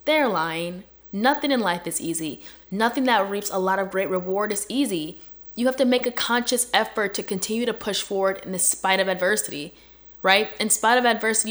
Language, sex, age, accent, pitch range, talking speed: English, female, 10-29, American, 180-230 Hz, 205 wpm